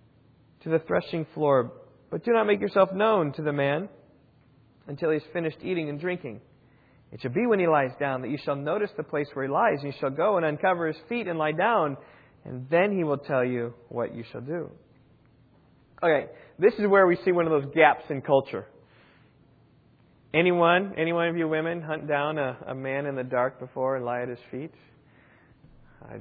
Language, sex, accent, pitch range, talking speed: English, male, American, 135-170 Hz, 205 wpm